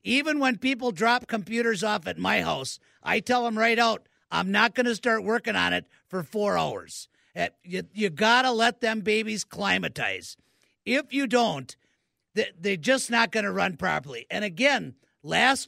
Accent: American